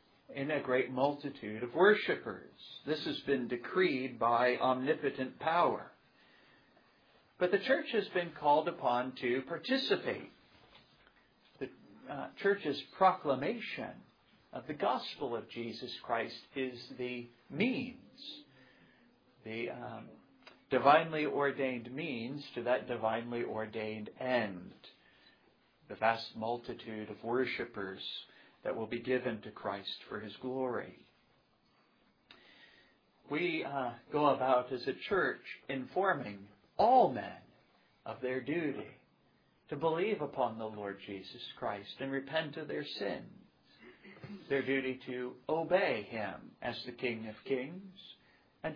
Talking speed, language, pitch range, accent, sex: 115 wpm, English, 120-155 Hz, American, male